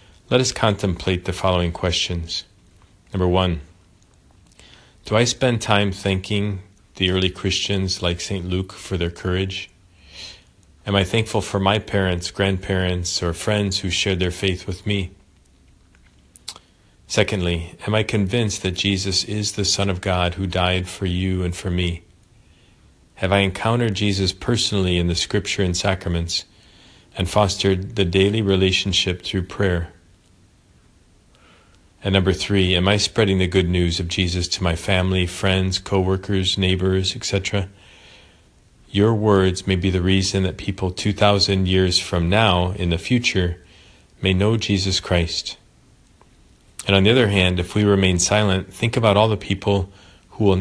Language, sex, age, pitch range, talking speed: English, male, 40-59, 90-100 Hz, 150 wpm